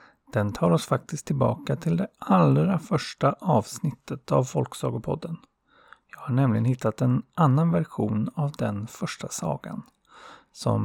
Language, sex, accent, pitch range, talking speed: Swedish, male, native, 115-160 Hz, 135 wpm